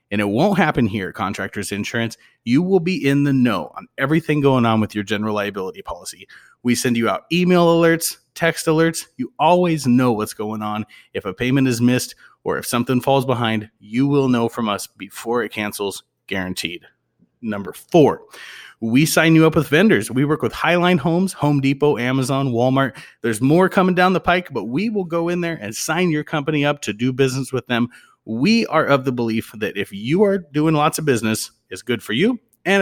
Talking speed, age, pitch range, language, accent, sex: 205 wpm, 30-49, 120-165 Hz, English, American, male